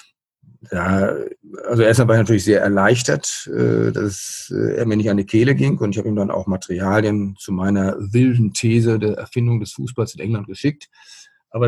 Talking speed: 180 wpm